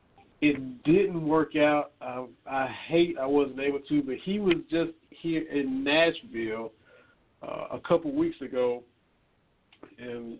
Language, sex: English, male